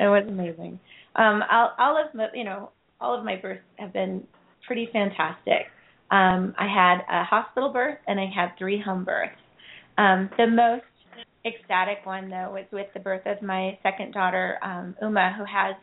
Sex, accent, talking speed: female, American, 180 wpm